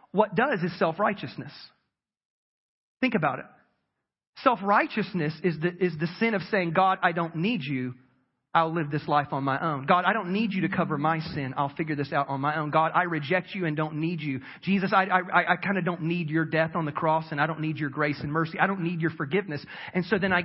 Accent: American